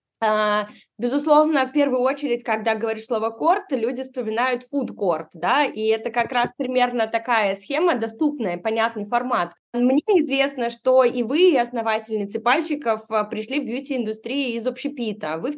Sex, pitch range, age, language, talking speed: female, 210-250 Hz, 20-39, Russian, 145 wpm